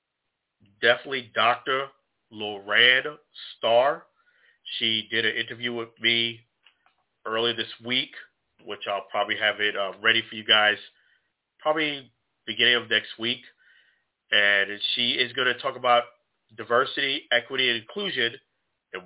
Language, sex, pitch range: English, male, 110-135 Hz